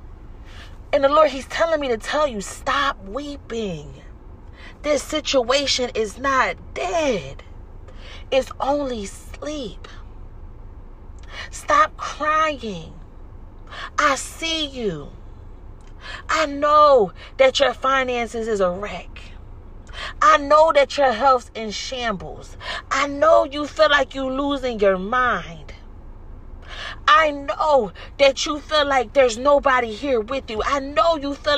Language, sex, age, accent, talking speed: English, female, 40-59, American, 120 wpm